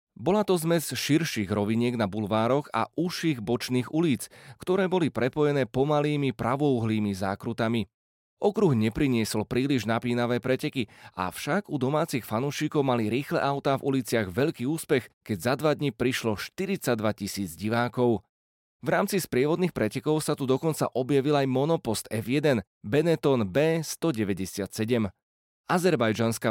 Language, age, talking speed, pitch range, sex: Slovak, 30-49, 125 wpm, 115-150 Hz, male